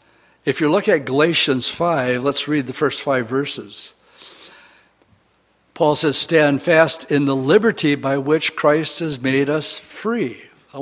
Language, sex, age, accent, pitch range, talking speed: English, male, 60-79, American, 135-160 Hz, 150 wpm